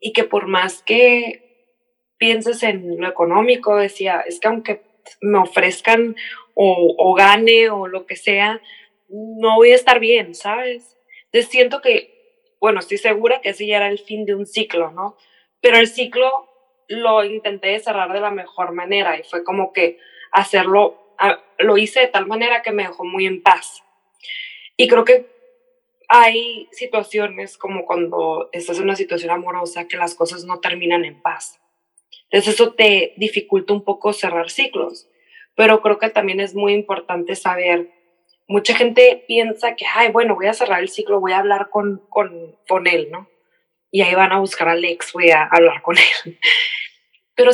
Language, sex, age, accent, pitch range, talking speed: Spanish, female, 20-39, Mexican, 185-240 Hz, 175 wpm